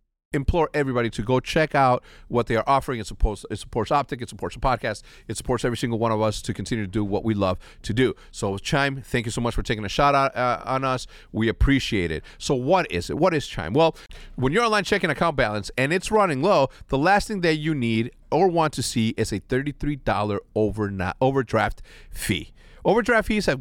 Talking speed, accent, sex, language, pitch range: 220 wpm, American, male, English, 115-175 Hz